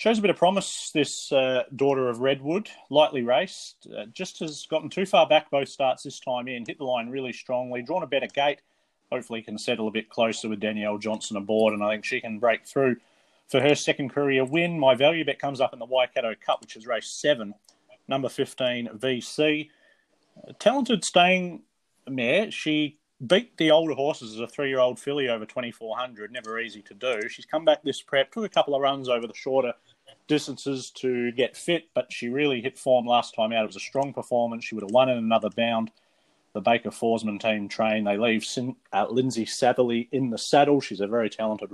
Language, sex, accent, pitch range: English, male, Australian, 115-150 Hz